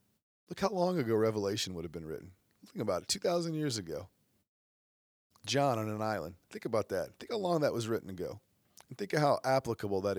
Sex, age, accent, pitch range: male, 40-59, American, 95-115 Hz